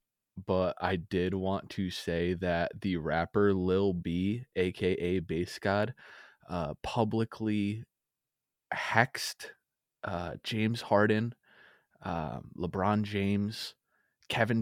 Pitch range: 85-100 Hz